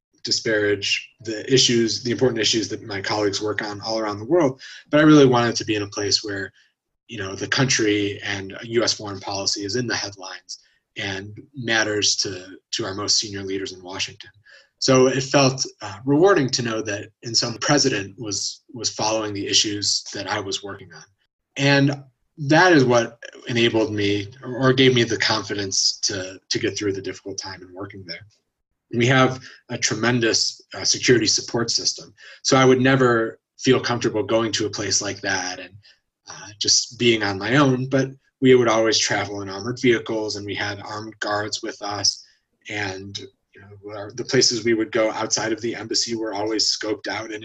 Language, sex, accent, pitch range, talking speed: English, male, American, 100-125 Hz, 185 wpm